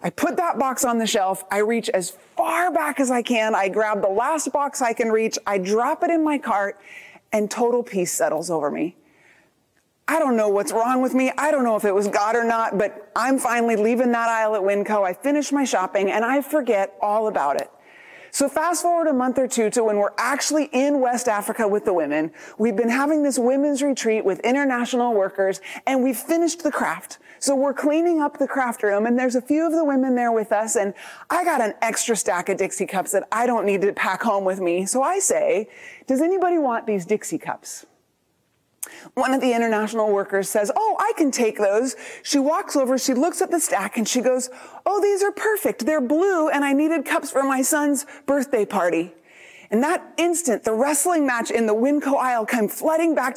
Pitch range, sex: 215-305 Hz, female